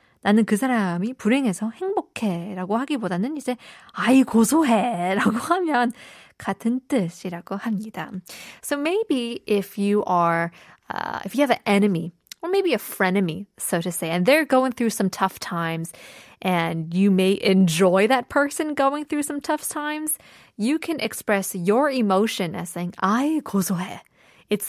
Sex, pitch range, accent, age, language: female, 190-265 Hz, American, 20-39, Korean